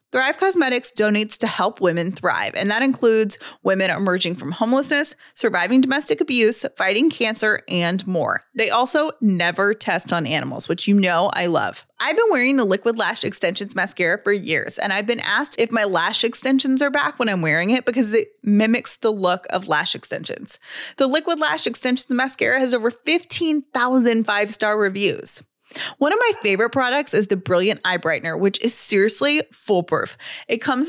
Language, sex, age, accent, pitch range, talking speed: English, female, 20-39, American, 190-260 Hz, 175 wpm